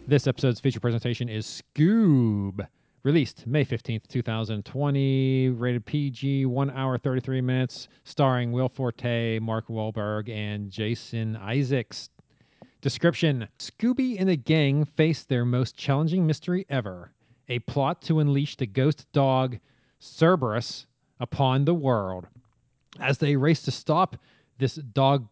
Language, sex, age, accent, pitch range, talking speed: English, male, 40-59, American, 120-150 Hz, 125 wpm